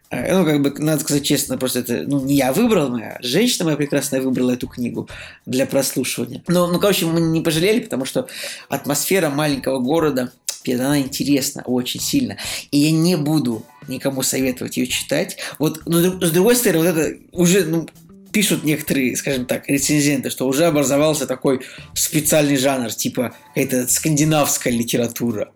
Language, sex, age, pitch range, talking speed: Russian, male, 20-39, 130-165 Hz, 160 wpm